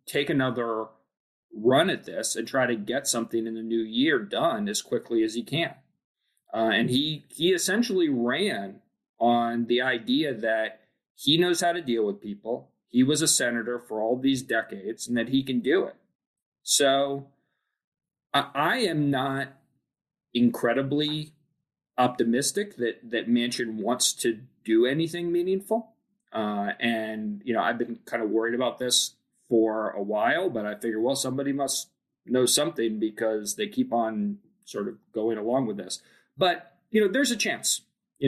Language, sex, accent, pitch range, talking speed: English, male, American, 115-150 Hz, 165 wpm